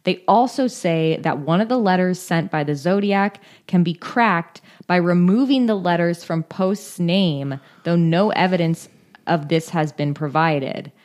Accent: American